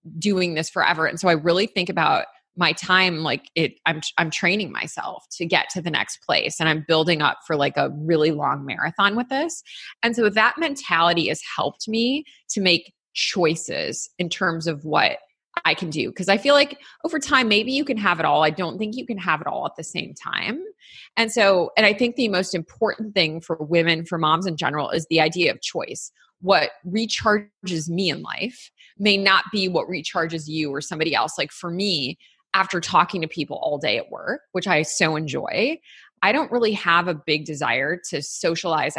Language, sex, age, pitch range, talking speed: English, female, 20-39, 160-210 Hz, 205 wpm